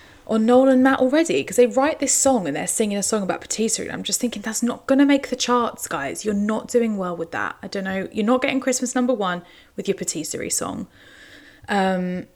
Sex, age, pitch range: female, 20-39, 180-245 Hz